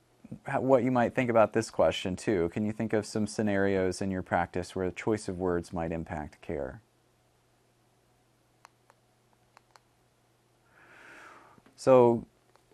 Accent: American